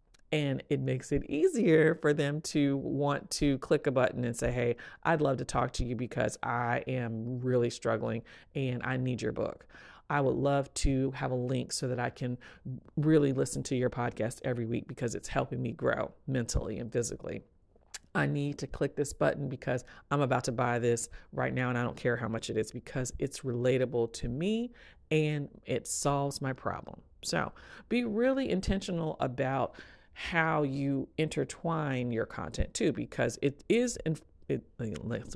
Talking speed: 180 wpm